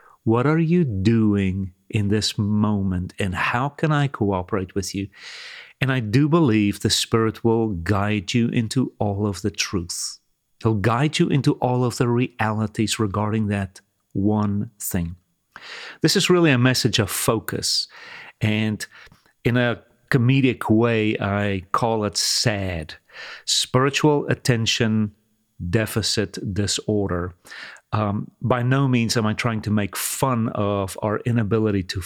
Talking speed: 140 wpm